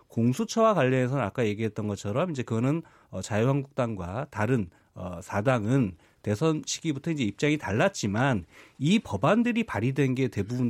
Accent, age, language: native, 40-59, Korean